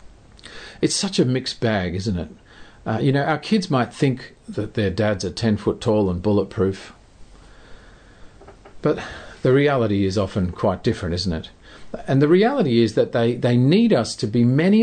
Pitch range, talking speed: 90-135 Hz, 180 wpm